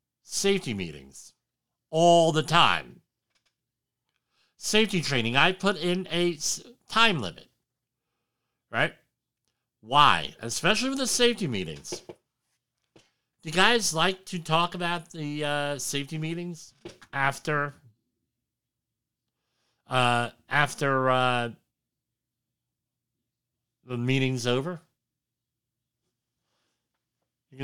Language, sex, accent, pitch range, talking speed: English, male, American, 120-170 Hz, 85 wpm